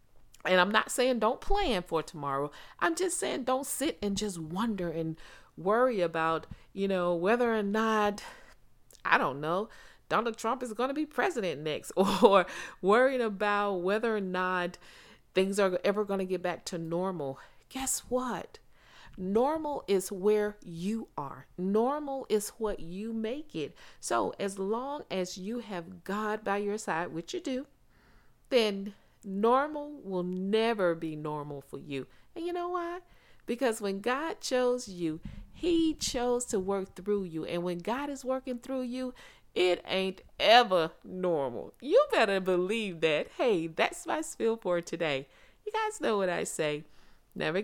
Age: 40-59